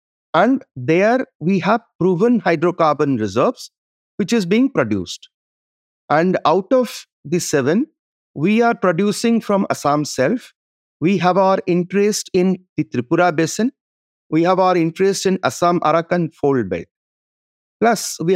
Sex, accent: male, Indian